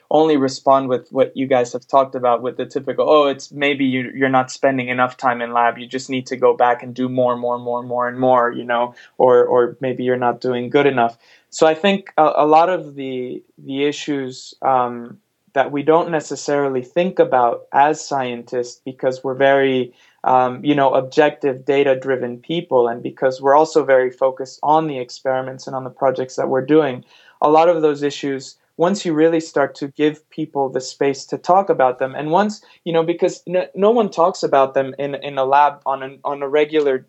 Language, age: English, 20-39